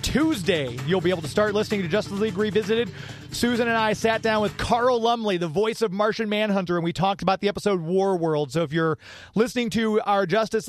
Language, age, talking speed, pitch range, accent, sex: English, 30-49, 220 wpm, 170-225 Hz, American, male